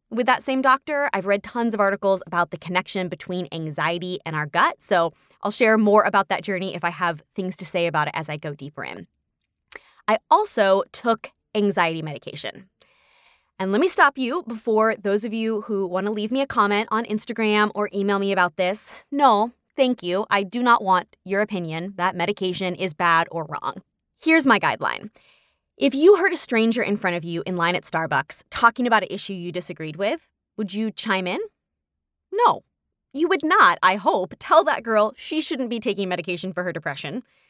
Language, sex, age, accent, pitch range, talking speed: English, female, 20-39, American, 185-255 Hz, 200 wpm